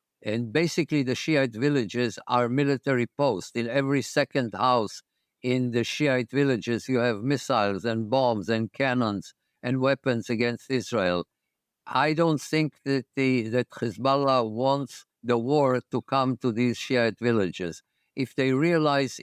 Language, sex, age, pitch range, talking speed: English, male, 50-69, 115-140 Hz, 145 wpm